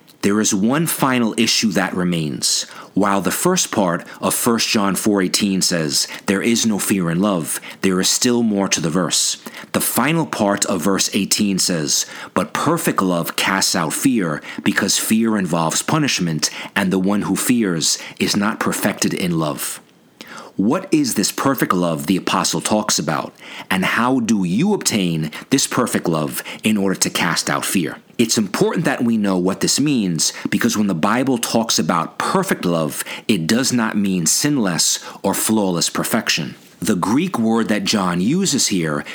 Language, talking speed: English, 170 wpm